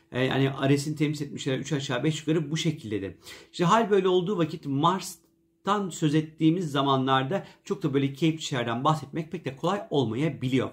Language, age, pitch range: Turkish, 50-69, 135-175 Hz